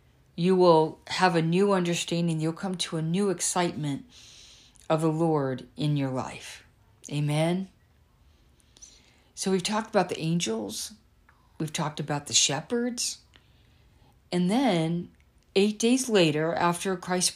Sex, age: female, 50-69